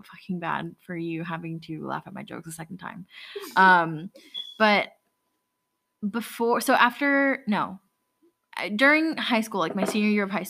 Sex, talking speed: female, 160 wpm